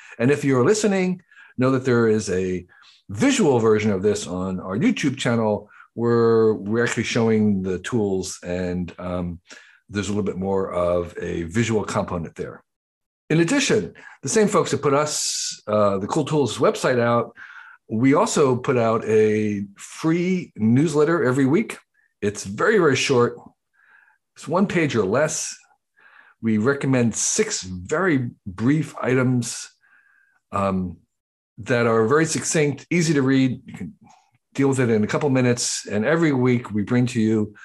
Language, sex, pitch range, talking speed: English, male, 105-145 Hz, 155 wpm